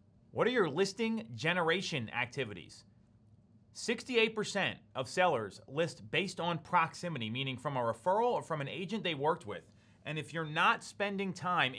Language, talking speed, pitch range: English, 155 wpm, 135-195 Hz